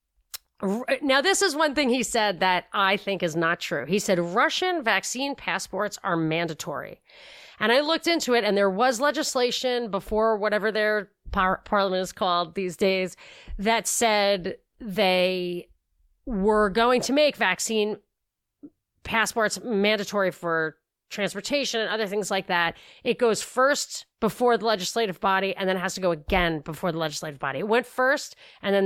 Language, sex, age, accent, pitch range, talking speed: English, female, 30-49, American, 185-230 Hz, 160 wpm